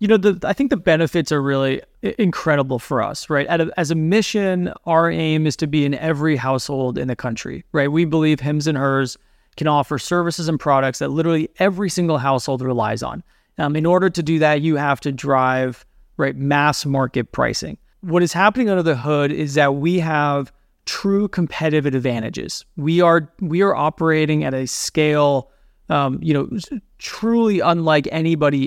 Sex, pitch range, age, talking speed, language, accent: male, 140-170 Hz, 30-49, 185 wpm, English, American